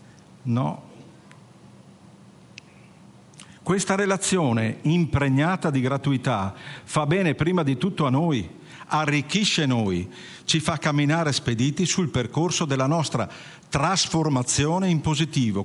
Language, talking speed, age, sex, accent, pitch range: Italian, 100 wpm, 50-69, male, native, 120-165 Hz